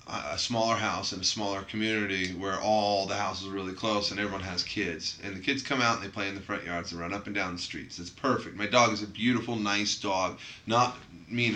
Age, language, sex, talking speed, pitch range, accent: 30-49, English, male, 250 wpm, 100-115 Hz, American